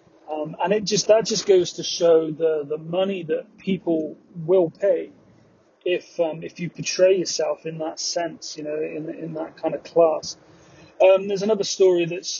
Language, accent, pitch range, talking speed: English, British, 160-190 Hz, 185 wpm